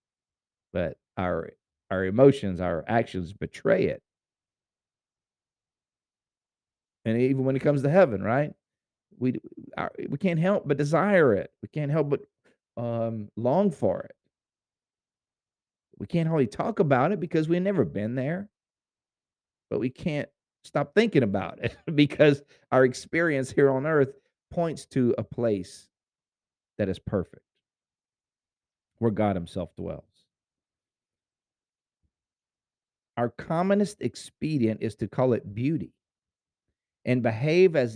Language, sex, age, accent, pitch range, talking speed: English, male, 50-69, American, 90-135 Hz, 125 wpm